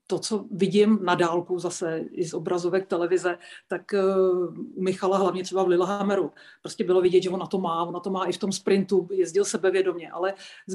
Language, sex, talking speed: Czech, female, 205 wpm